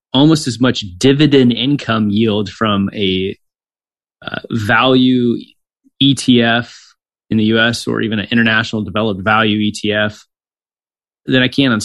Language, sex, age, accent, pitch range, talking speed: English, male, 20-39, American, 100-125 Hz, 125 wpm